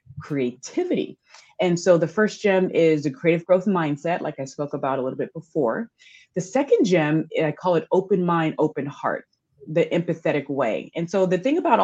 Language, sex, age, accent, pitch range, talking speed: English, female, 30-49, American, 140-185 Hz, 190 wpm